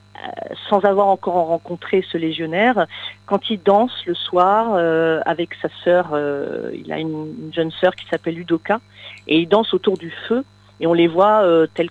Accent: French